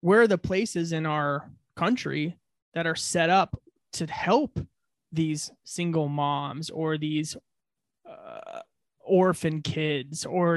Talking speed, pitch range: 125 wpm, 155-185 Hz